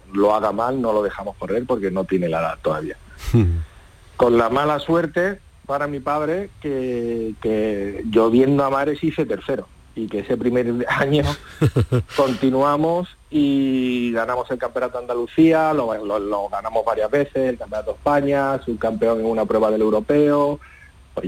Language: Spanish